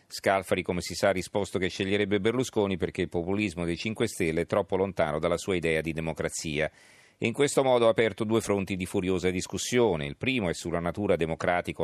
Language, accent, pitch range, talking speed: Italian, native, 85-105 Hz, 205 wpm